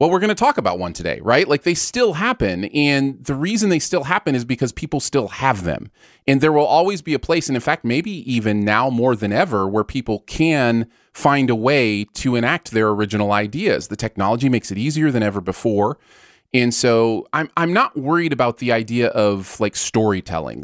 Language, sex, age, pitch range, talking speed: English, male, 30-49, 105-140 Hz, 210 wpm